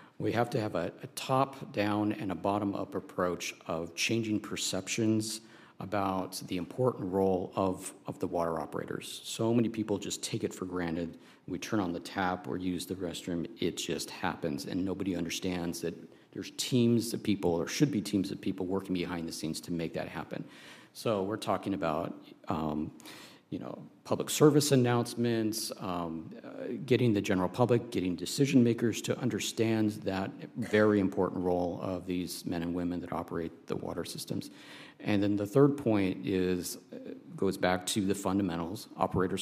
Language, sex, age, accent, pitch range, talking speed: English, male, 50-69, American, 90-110 Hz, 170 wpm